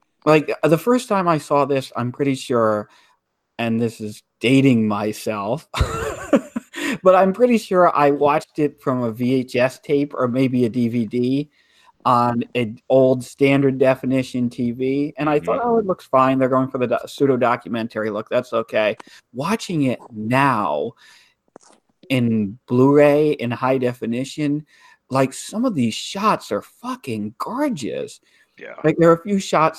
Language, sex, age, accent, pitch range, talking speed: English, male, 40-59, American, 120-155 Hz, 145 wpm